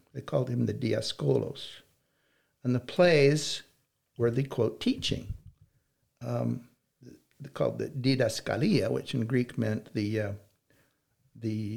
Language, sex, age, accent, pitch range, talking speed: English, male, 60-79, American, 110-140 Hz, 120 wpm